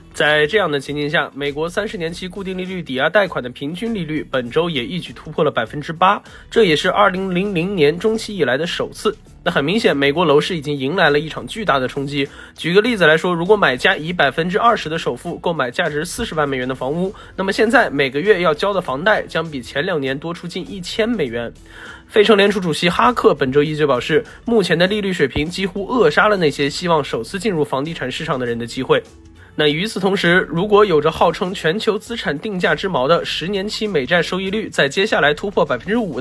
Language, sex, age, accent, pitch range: Chinese, male, 20-39, native, 145-200 Hz